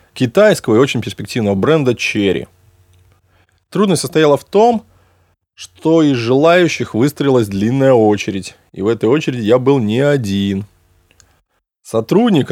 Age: 20-39